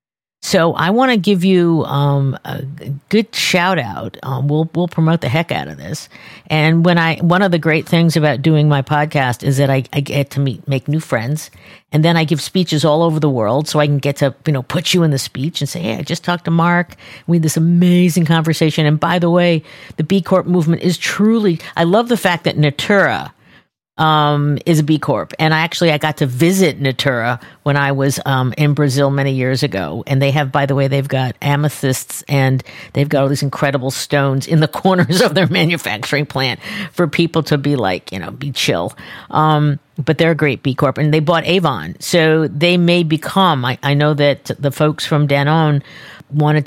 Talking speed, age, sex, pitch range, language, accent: 220 wpm, 50-69, female, 140-170 Hz, English, American